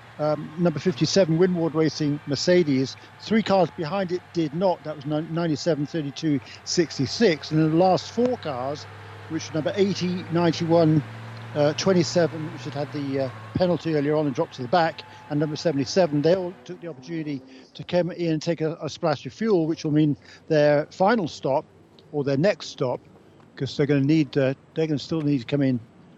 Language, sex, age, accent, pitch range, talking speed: English, male, 50-69, British, 145-175 Hz, 195 wpm